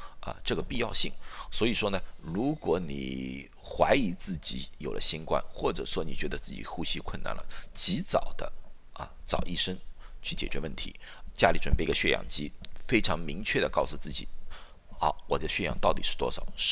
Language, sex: Chinese, male